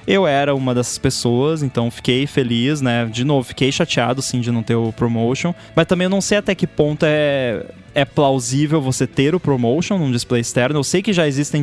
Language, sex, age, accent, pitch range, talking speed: Portuguese, male, 20-39, Brazilian, 125-155 Hz, 215 wpm